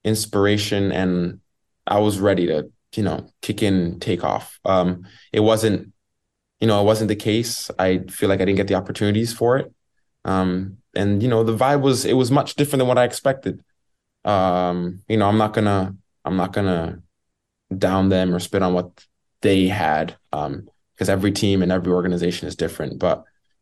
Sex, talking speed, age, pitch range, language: male, 185 wpm, 20-39, 95-115 Hz, English